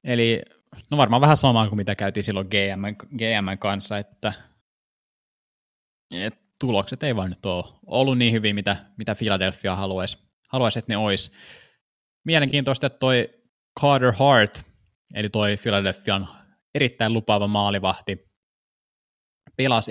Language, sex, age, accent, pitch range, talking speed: Finnish, male, 20-39, native, 100-120 Hz, 125 wpm